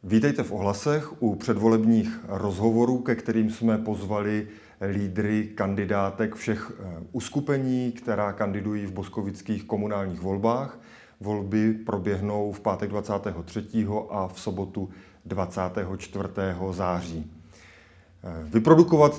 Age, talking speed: 30-49, 95 wpm